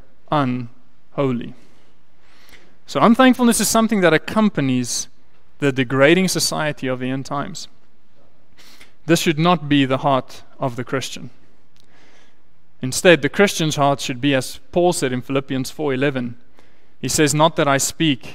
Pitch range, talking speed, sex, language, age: 130-165 Hz, 135 wpm, male, English, 30-49